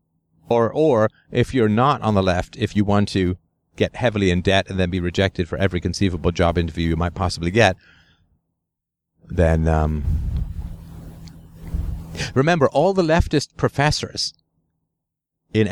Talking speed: 140 wpm